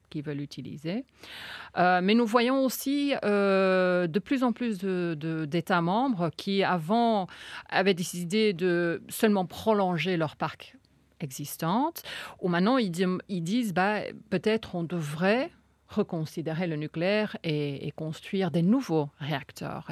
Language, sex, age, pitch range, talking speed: French, female, 40-59, 155-205 Hz, 140 wpm